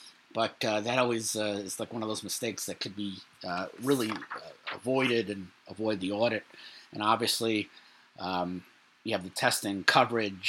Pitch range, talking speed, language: 110-145 Hz, 170 wpm, English